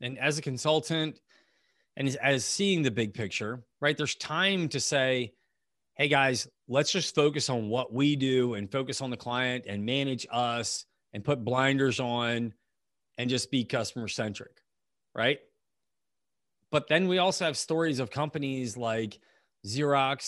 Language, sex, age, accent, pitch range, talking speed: English, male, 30-49, American, 115-150 Hz, 155 wpm